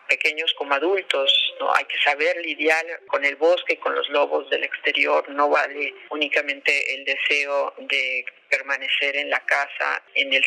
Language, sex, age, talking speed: Spanish, female, 40-59, 165 wpm